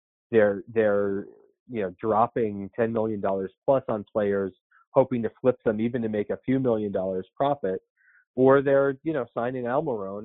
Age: 40-59